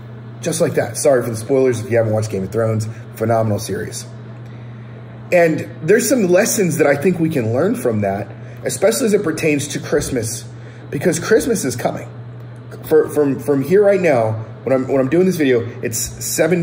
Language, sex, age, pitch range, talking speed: English, male, 30-49, 115-185 Hz, 190 wpm